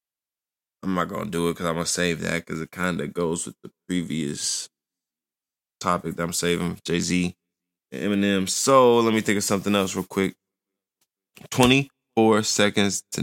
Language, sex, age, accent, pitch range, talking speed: English, male, 20-39, American, 90-110 Hz, 170 wpm